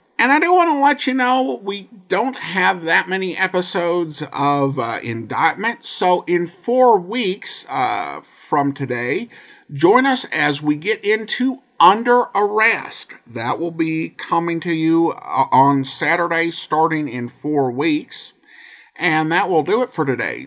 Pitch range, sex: 160-245 Hz, male